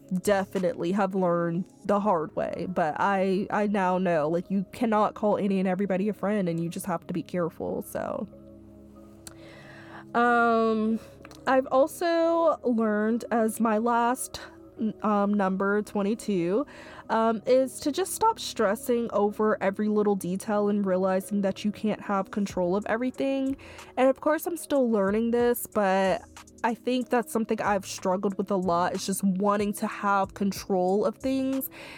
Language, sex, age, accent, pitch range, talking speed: English, female, 20-39, American, 195-235 Hz, 155 wpm